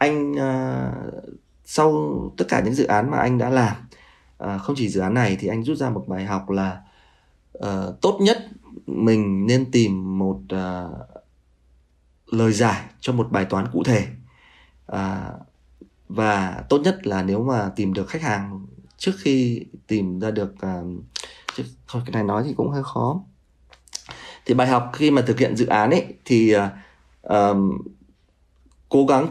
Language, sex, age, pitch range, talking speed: Vietnamese, male, 20-39, 95-135 Hz, 150 wpm